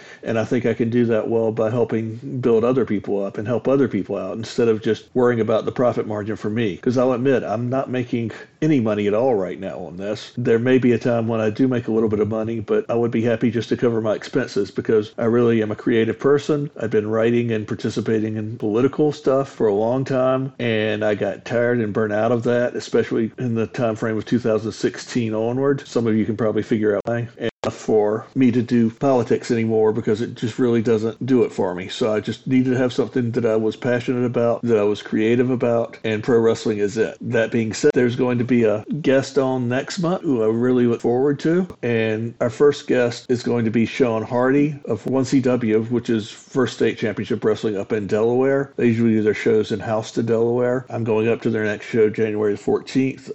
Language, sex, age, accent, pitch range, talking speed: English, male, 50-69, American, 110-125 Hz, 230 wpm